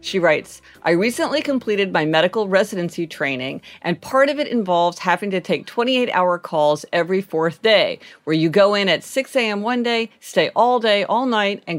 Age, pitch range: 50-69, 165-225 Hz